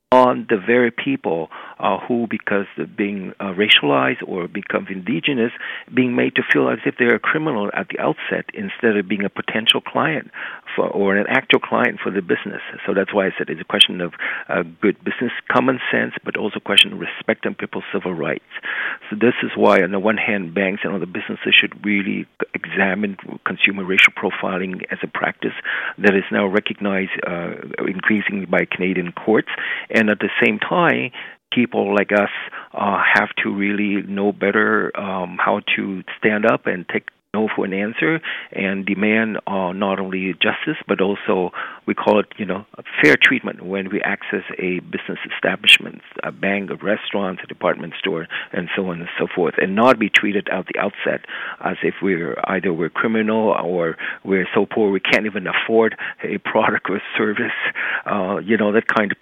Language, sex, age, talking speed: English, male, 50-69, 185 wpm